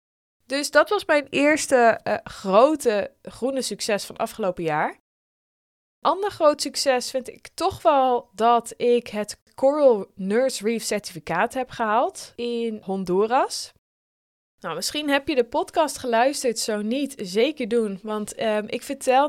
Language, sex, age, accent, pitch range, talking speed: Dutch, female, 20-39, Dutch, 195-255 Hz, 135 wpm